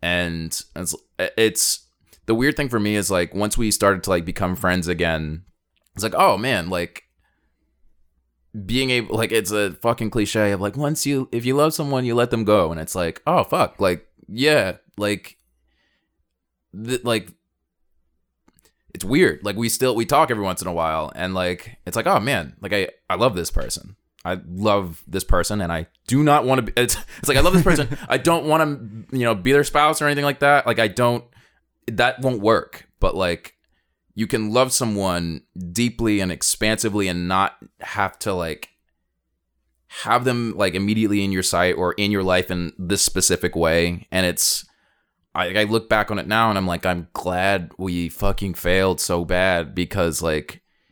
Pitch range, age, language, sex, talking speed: 85-115 Hz, 20-39, English, male, 190 wpm